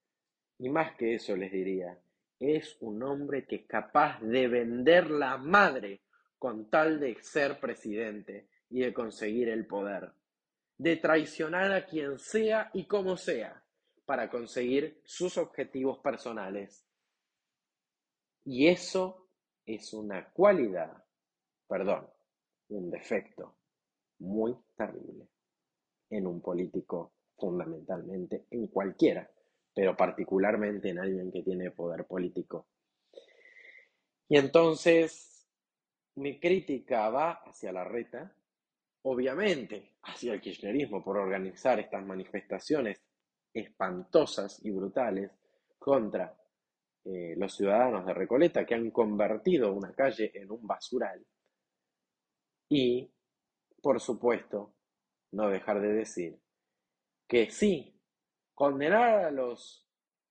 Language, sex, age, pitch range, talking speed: Spanish, male, 30-49, 105-160 Hz, 105 wpm